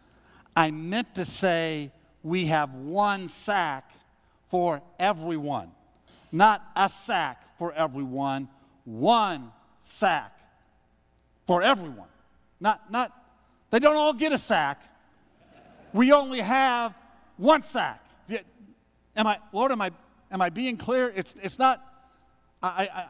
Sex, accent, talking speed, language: male, American, 115 wpm, English